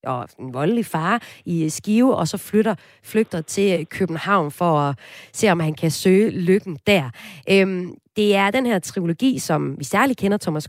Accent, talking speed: native, 175 wpm